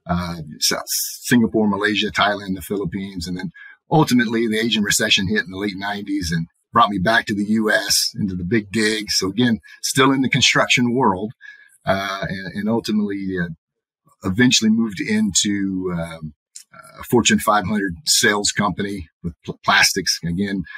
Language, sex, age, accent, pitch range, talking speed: English, male, 40-59, American, 95-135 Hz, 160 wpm